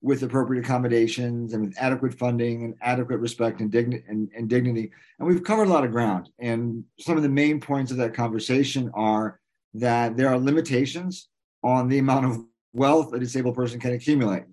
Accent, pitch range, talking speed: American, 115-135 Hz, 180 wpm